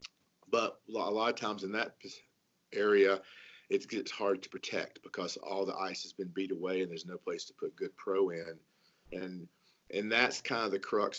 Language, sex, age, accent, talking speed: English, male, 40-59, American, 200 wpm